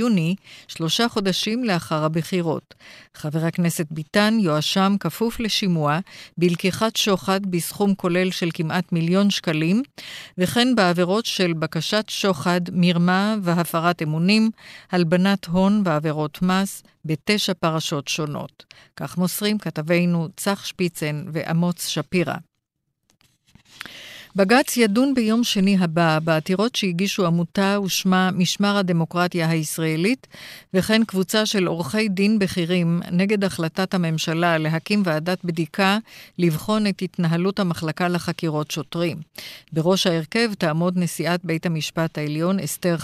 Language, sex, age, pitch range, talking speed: Hebrew, female, 50-69, 165-195 Hz, 110 wpm